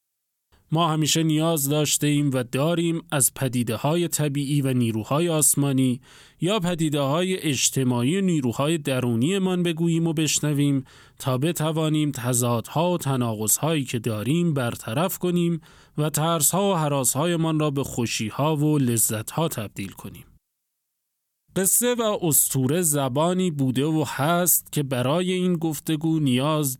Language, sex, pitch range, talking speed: Persian, male, 130-165 Hz, 125 wpm